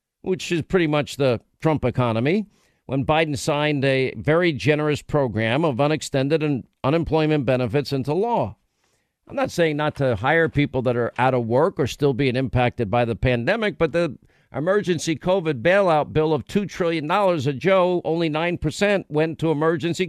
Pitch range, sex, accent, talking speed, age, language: 140-170 Hz, male, American, 165 wpm, 50-69, English